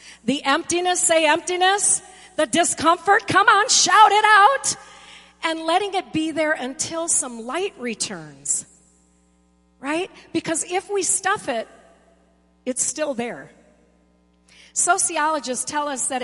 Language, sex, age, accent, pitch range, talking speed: English, female, 40-59, American, 195-295 Hz, 120 wpm